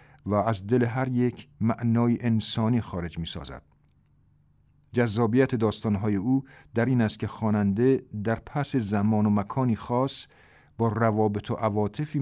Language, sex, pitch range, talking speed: Persian, male, 105-125 Hz, 135 wpm